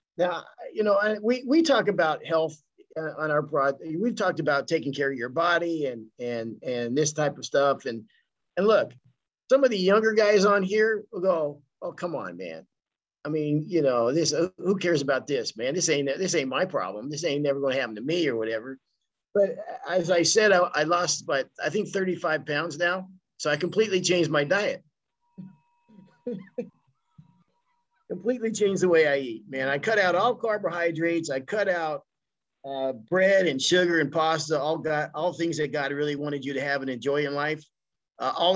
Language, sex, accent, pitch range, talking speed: English, male, American, 140-190 Hz, 195 wpm